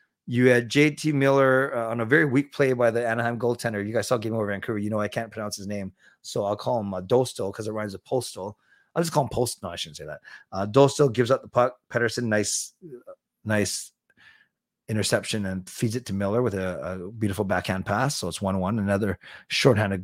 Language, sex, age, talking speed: English, male, 30-49, 220 wpm